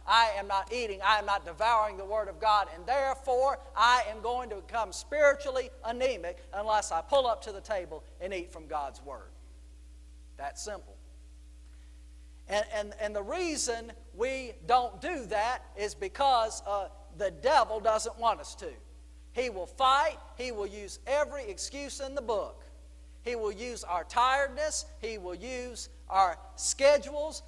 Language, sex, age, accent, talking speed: English, male, 50-69, American, 160 wpm